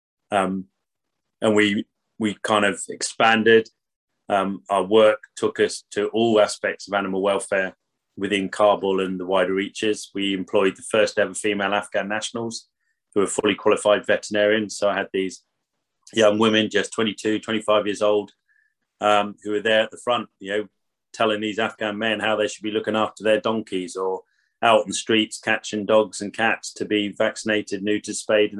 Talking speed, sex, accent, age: 175 wpm, male, British, 30-49